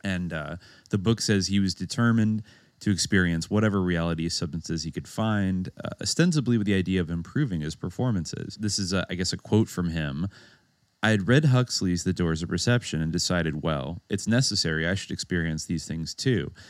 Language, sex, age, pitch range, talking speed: English, male, 30-49, 90-120 Hz, 190 wpm